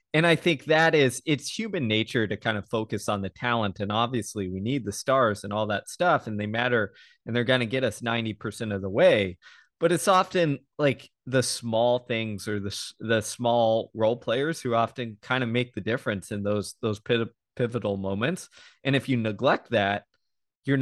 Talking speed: 200 wpm